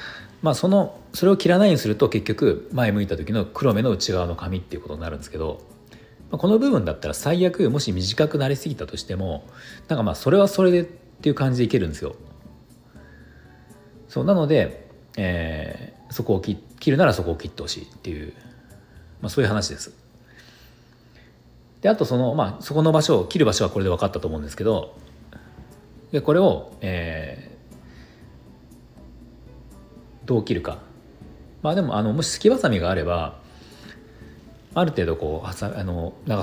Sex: male